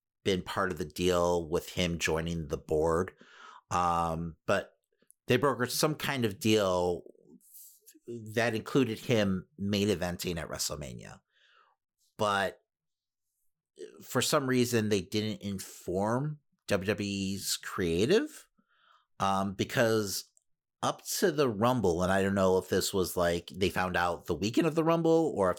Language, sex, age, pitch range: English, male, 50-69, 90-120 Hz